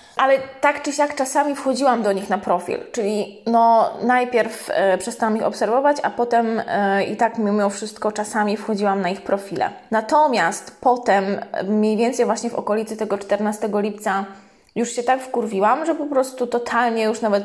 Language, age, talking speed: Polish, 20-39, 170 wpm